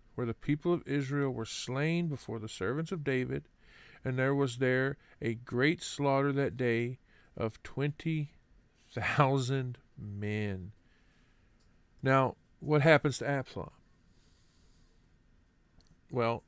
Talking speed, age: 110 wpm, 50-69